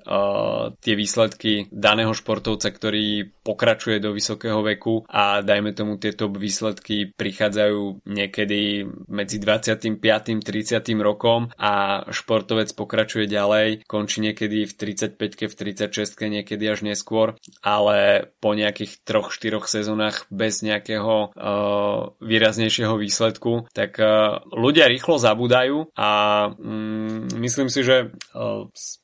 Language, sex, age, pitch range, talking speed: Slovak, male, 20-39, 105-110 Hz, 110 wpm